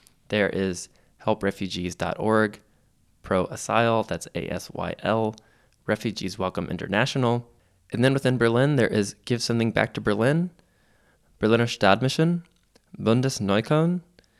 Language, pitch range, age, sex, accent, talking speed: English, 100-125 Hz, 20-39, male, American, 100 wpm